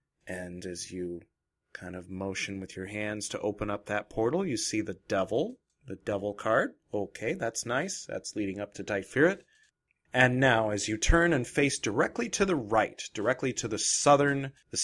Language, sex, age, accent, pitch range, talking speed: English, male, 30-49, American, 100-130 Hz, 180 wpm